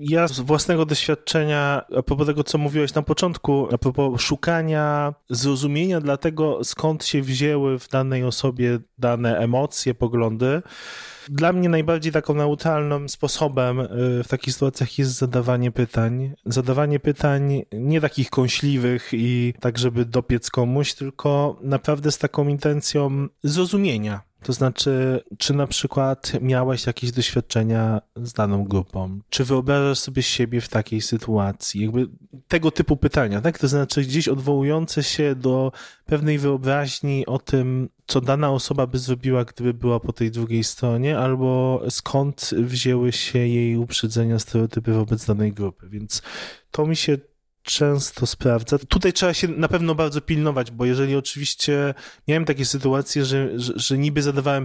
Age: 20-39